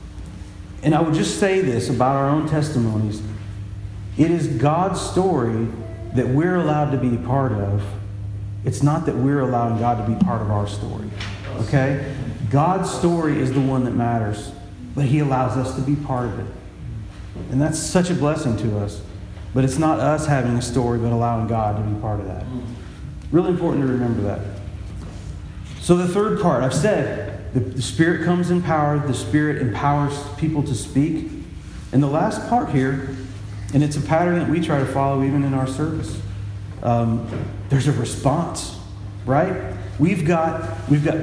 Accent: American